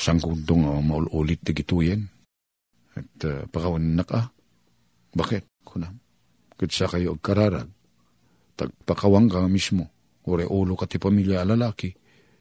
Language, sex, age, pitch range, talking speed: Filipino, male, 50-69, 95-150 Hz, 120 wpm